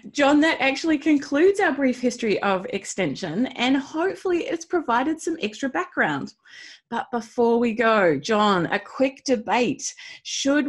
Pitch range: 200-280 Hz